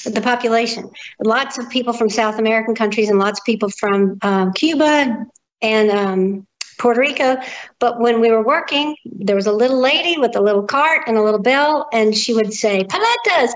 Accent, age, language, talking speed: American, 50-69, English, 190 wpm